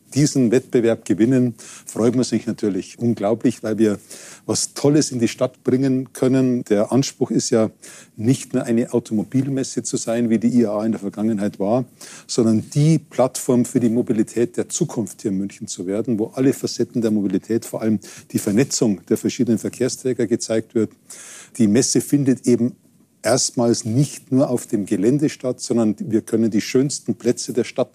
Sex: male